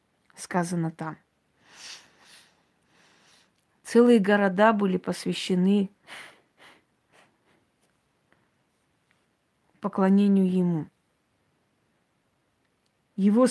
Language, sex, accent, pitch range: Russian, female, native, 190-215 Hz